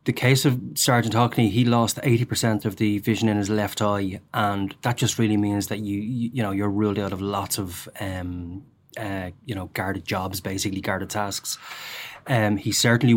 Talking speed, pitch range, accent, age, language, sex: 200 wpm, 100-115 Hz, Irish, 20-39, English, male